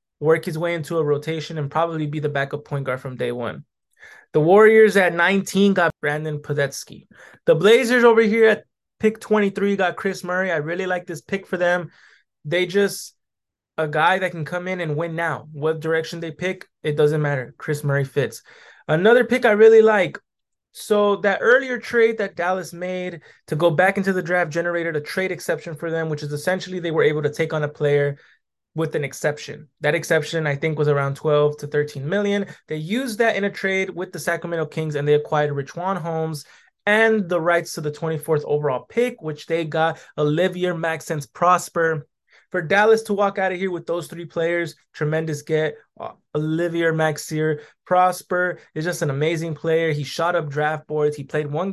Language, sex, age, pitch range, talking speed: English, male, 20-39, 150-185 Hz, 195 wpm